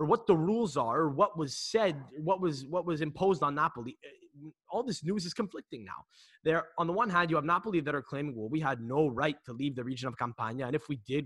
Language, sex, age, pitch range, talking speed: English, male, 20-39, 120-155 Hz, 250 wpm